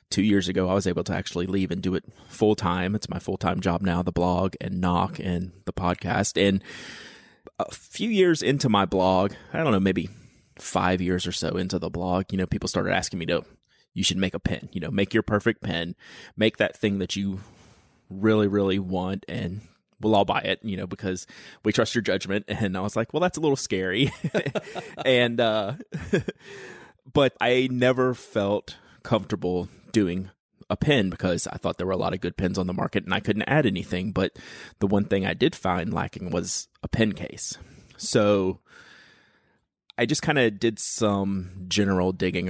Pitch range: 90-110 Hz